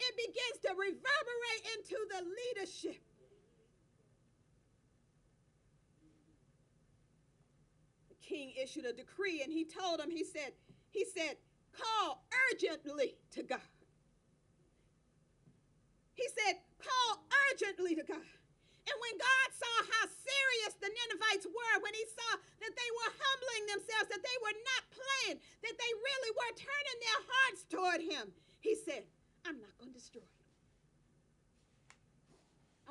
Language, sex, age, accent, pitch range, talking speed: English, female, 40-59, American, 300-450 Hz, 120 wpm